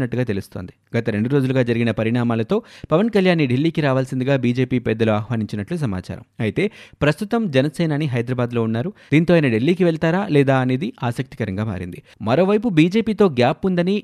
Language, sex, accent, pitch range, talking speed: Telugu, male, native, 110-155 Hz, 70 wpm